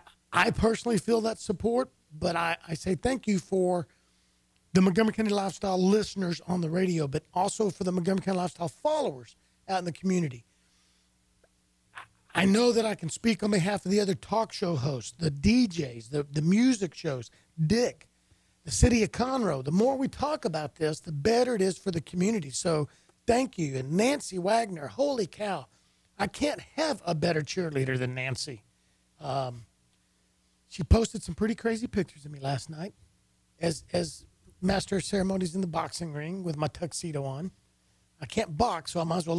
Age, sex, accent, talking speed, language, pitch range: 40-59, male, American, 180 wpm, English, 155-210 Hz